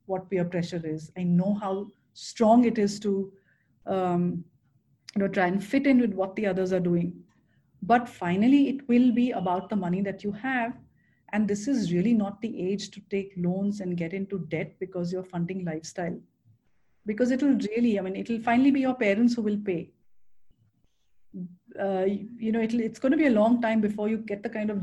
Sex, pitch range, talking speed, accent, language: female, 185-235 Hz, 200 wpm, Indian, English